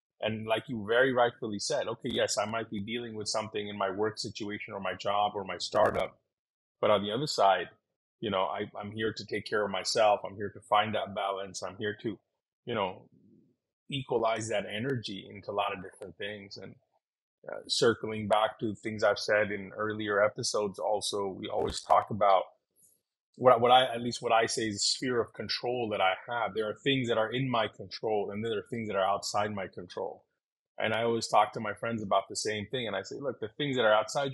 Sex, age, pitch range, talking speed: male, 30-49, 105-130 Hz, 220 wpm